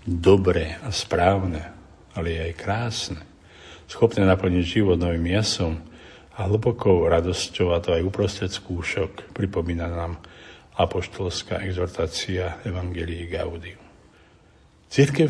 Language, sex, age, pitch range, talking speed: Slovak, male, 50-69, 85-100 Hz, 100 wpm